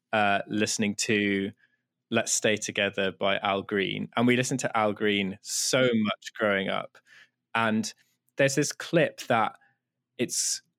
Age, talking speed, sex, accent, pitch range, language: 20-39, 140 wpm, male, British, 105-125 Hz, English